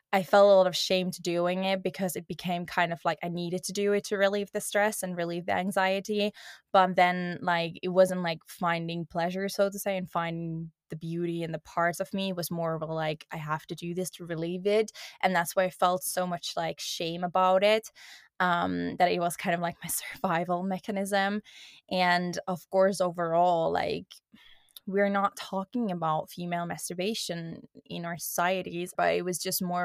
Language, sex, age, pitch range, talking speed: English, female, 20-39, 170-190 Hz, 205 wpm